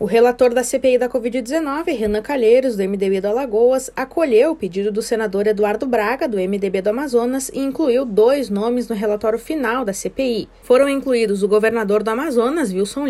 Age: 20-39